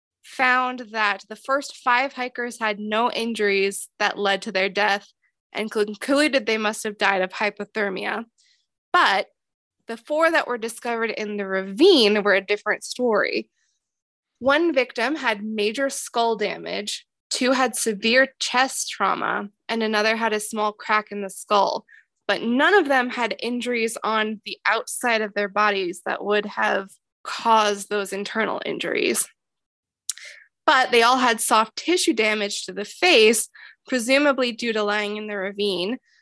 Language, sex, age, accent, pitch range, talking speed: English, female, 20-39, American, 210-245 Hz, 150 wpm